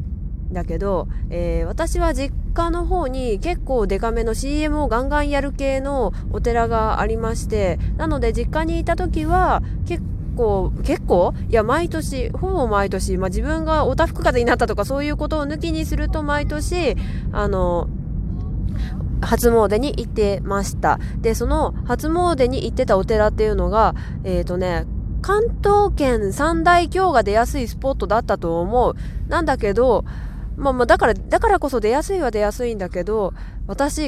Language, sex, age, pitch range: Japanese, female, 20-39, 190-280 Hz